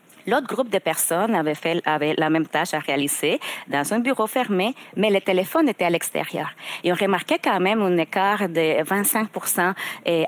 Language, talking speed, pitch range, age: French, 185 wpm, 165-195 Hz, 30-49